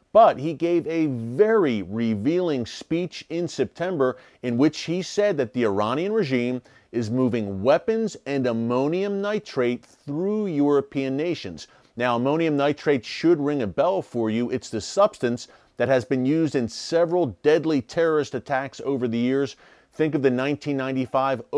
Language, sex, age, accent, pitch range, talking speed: English, male, 40-59, American, 125-155 Hz, 150 wpm